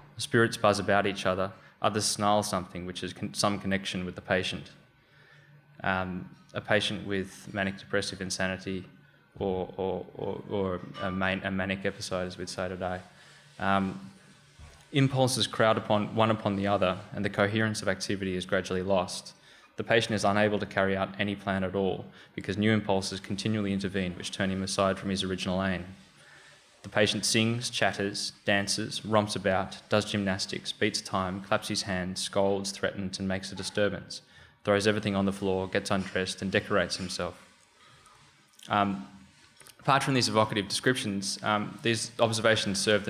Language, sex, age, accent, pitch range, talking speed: English, male, 20-39, Australian, 95-105 Hz, 160 wpm